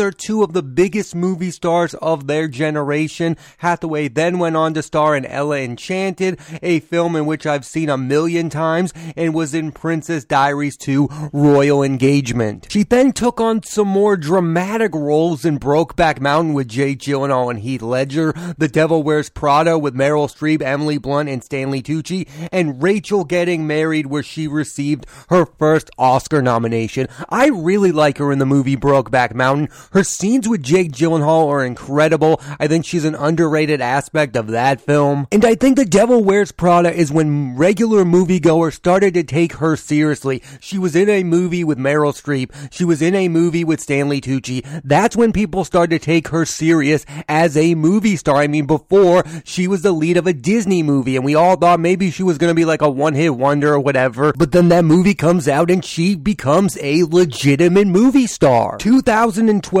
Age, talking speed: 30-49, 185 wpm